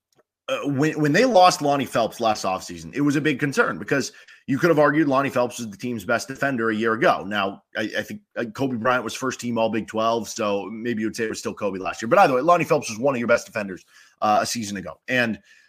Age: 30-49